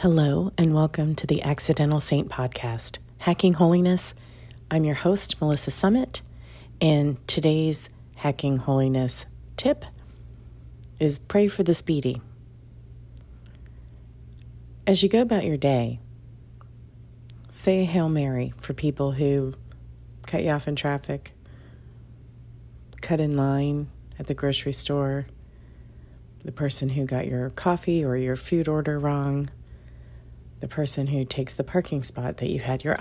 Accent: American